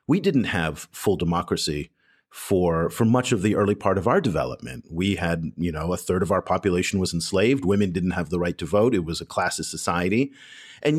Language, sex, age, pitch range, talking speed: English, male, 40-59, 100-135 Hz, 215 wpm